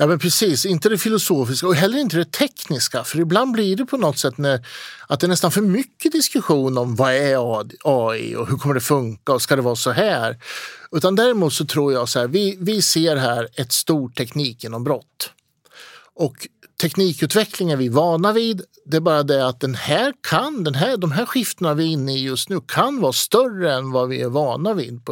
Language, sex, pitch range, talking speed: Swedish, male, 130-200 Hz, 215 wpm